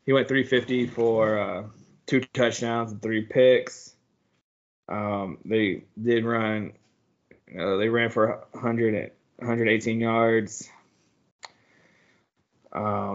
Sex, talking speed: male, 105 wpm